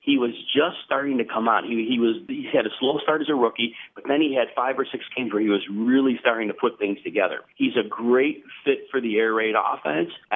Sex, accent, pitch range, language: male, American, 115-145 Hz, English